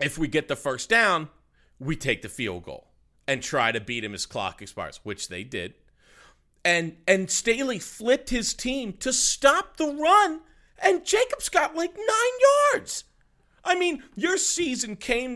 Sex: male